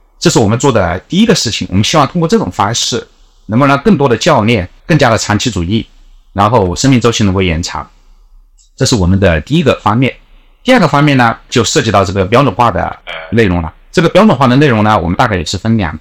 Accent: native